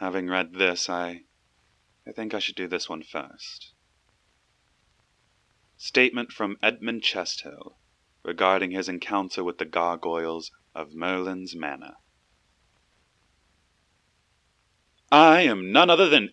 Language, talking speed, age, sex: English, 110 wpm, 30-49, male